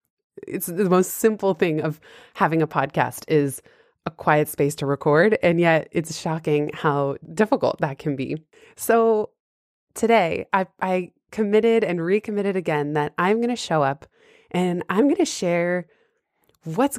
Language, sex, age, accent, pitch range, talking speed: English, female, 20-39, American, 160-210 Hz, 155 wpm